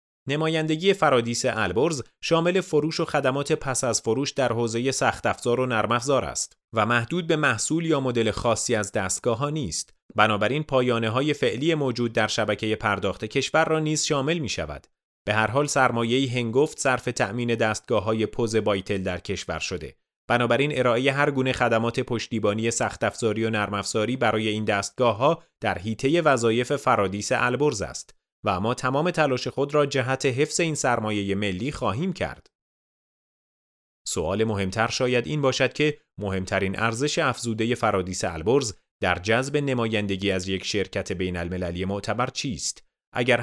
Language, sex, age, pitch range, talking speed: Persian, male, 30-49, 105-135 Hz, 150 wpm